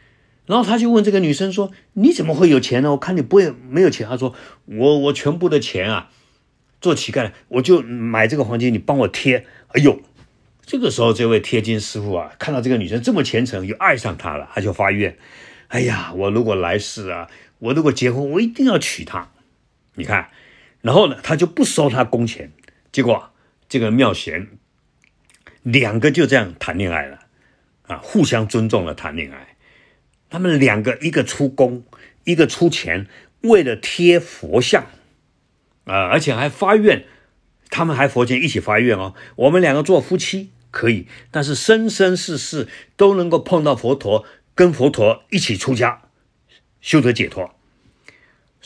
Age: 50-69